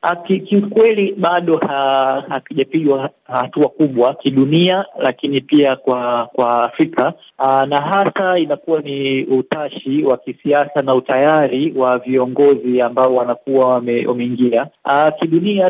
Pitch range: 130-165 Hz